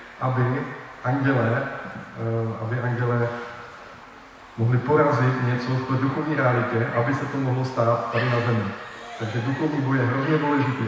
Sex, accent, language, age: male, native, Czech, 20-39